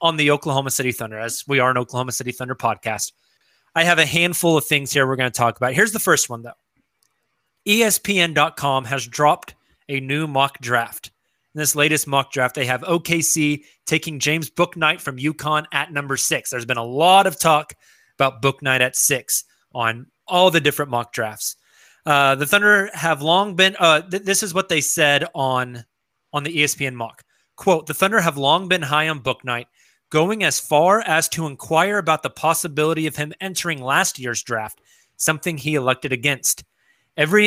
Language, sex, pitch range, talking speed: English, male, 135-175 Hz, 185 wpm